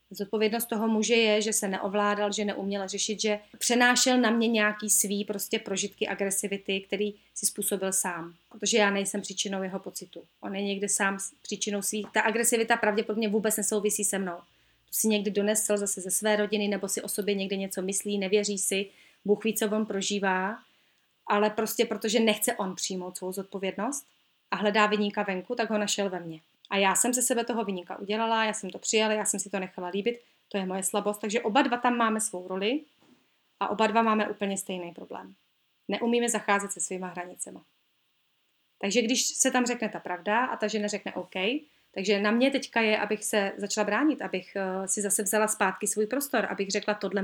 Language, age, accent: Czech, 30-49, native